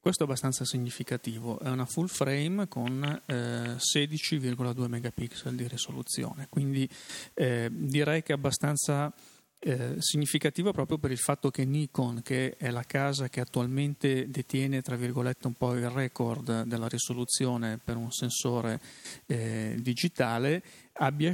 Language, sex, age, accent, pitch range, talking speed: Italian, male, 40-59, native, 120-145 Hz, 140 wpm